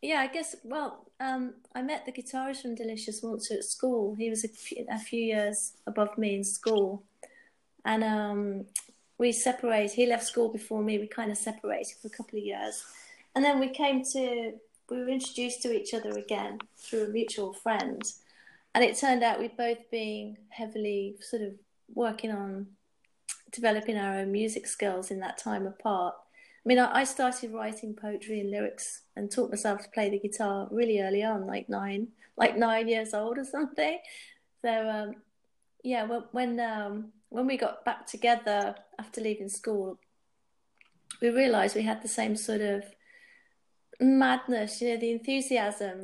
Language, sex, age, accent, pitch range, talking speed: English, female, 30-49, British, 210-240 Hz, 170 wpm